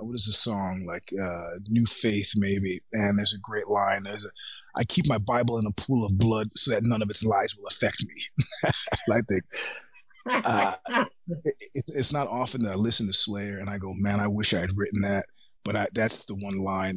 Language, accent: English, American